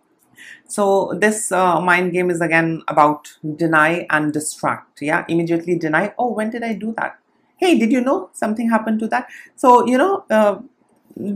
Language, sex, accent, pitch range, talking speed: English, female, Indian, 155-195 Hz, 170 wpm